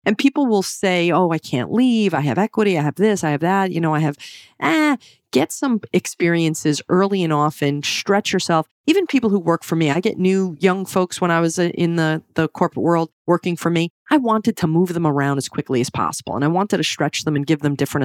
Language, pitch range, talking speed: English, 150-190 Hz, 240 wpm